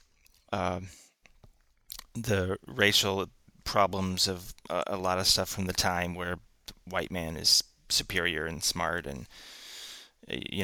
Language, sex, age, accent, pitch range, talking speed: English, male, 30-49, American, 90-100 Hz, 130 wpm